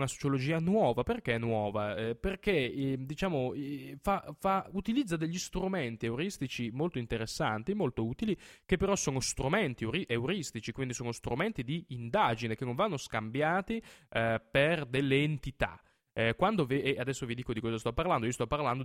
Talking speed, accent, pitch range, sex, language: 170 wpm, native, 115-165 Hz, male, Italian